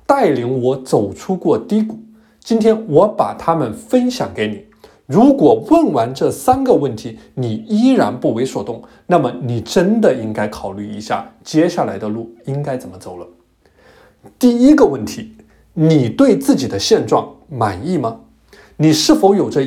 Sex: male